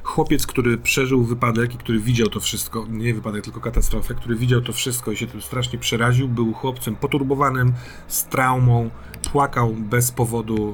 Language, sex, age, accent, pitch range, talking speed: Polish, male, 40-59, native, 105-125 Hz, 170 wpm